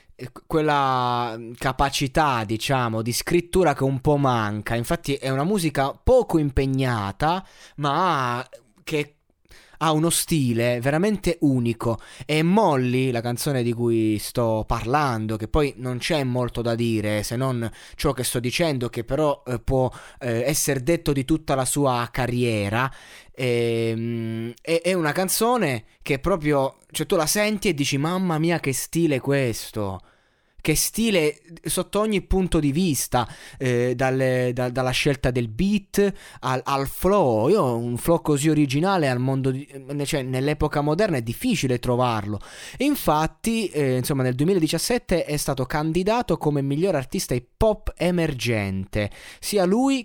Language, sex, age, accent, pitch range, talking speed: Italian, male, 20-39, native, 120-160 Hz, 145 wpm